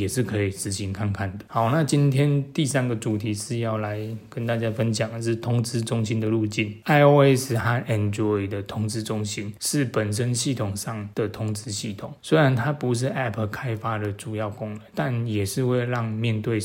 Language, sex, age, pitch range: Chinese, male, 20-39, 105-125 Hz